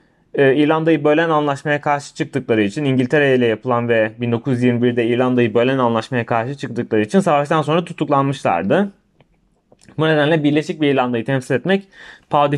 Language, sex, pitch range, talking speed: Turkish, male, 130-170 Hz, 135 wpm